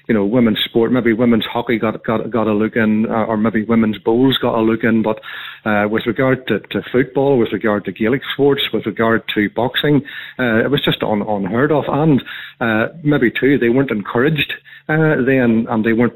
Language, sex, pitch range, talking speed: English, male, 110-135 Hz, 210 wpm